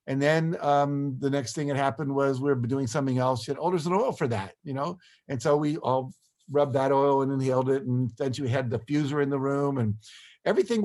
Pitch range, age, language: 130-160 Hz, 50-69, English